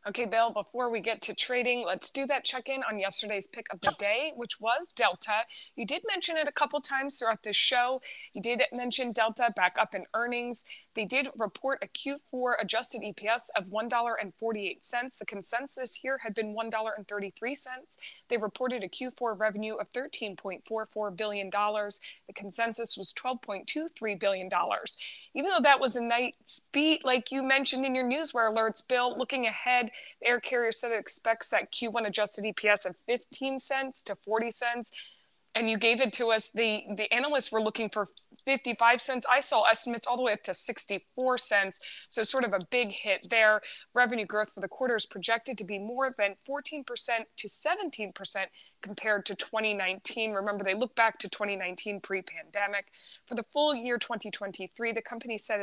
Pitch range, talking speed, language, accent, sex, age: 210-255 Hz, 175 wpm, English, American, female, 20-39